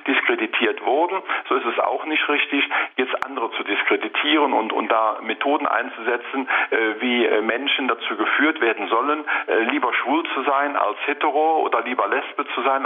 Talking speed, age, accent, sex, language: 170 wpm, 50-69, German, male, German